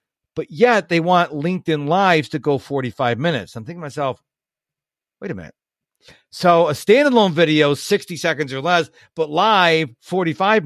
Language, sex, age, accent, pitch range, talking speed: English, male, 50-69, American, 140-185 Hz, 160 wpm